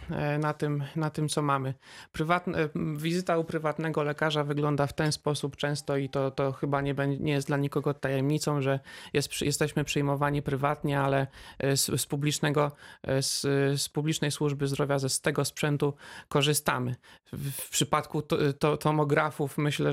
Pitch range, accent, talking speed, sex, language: 145-165 Hz, native, 155 wpm, male, Polish